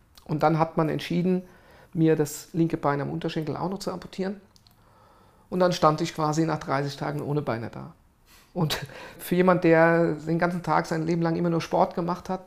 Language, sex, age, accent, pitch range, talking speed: English, male, 50-69, German, 150-175 Hz, 195 wpm